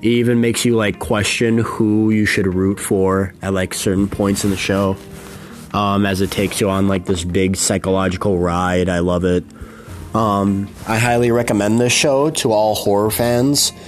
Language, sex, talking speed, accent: English, male, 175 wpm, American